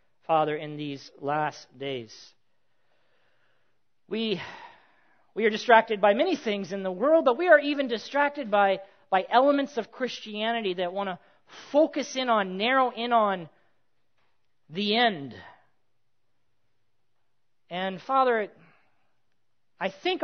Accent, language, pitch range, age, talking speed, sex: American, English, 185-280 Hz, 40-59, 120 wpm, male